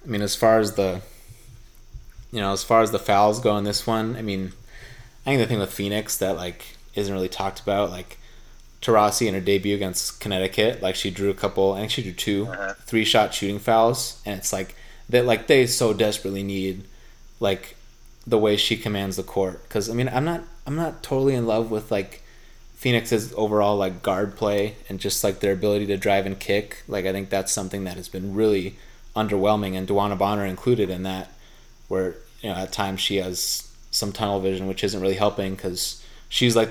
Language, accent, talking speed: English, American, 210 wpm